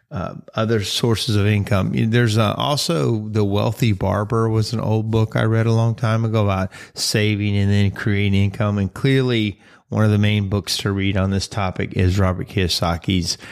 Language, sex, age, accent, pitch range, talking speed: English, male, 30-49, American, 95-120 Hz, 185 wpm